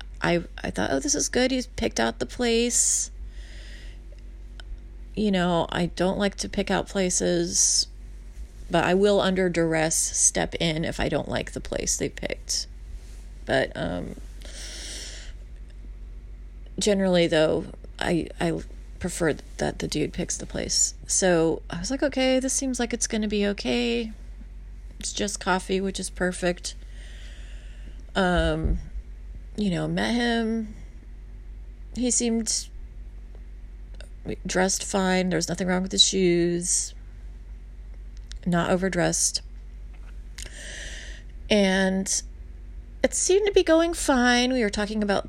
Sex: female